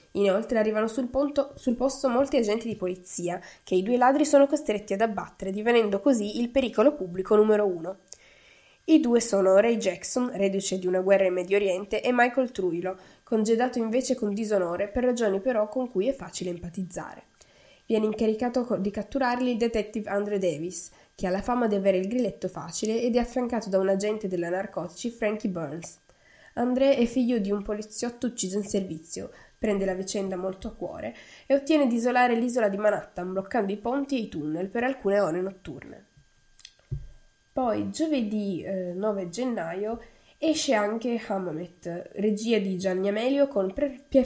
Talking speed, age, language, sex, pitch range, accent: 170 wpm, 10-29, Italian, female, 190-245 Hz, native